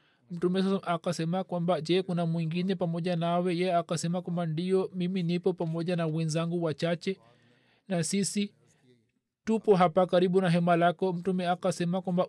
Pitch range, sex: 165-185 Hz, male